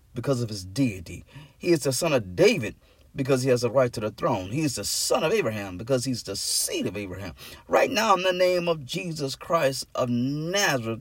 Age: 30-49